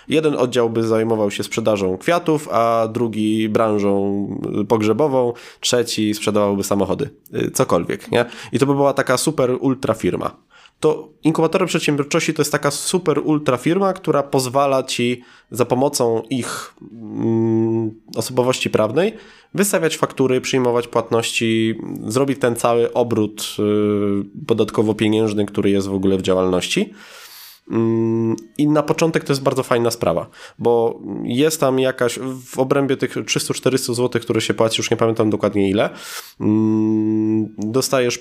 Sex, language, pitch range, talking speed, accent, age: male, Polish, 105-130 Hz, 130 wpm, native, 20-39